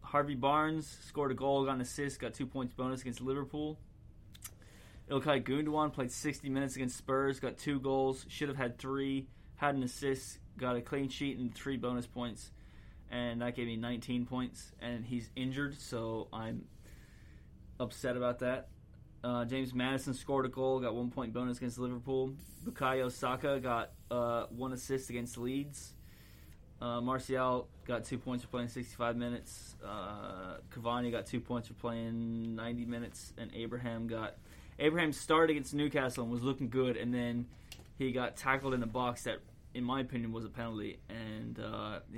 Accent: American